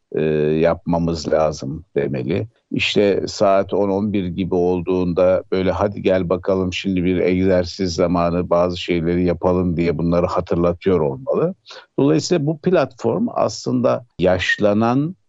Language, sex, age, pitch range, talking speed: Turkish, male, 50-69, 90-120 Hz, 110 wpm